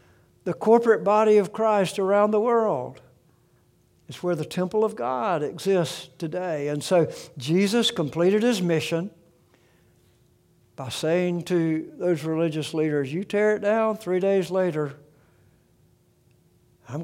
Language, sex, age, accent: English, male, 60-79, American